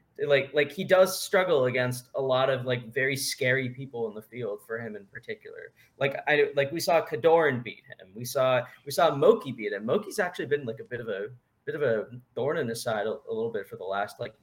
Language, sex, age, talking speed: English, male, 20-39, 240 wpm